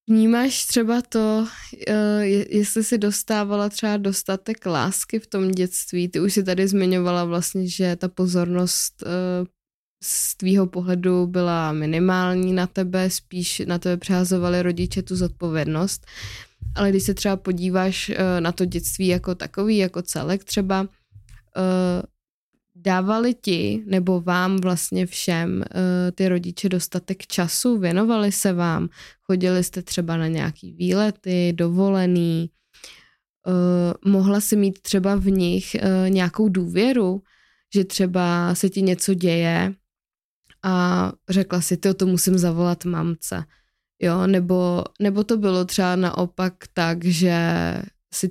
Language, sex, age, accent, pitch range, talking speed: Czech, female, 20-39, native, 175-195 Hz, 125 wpm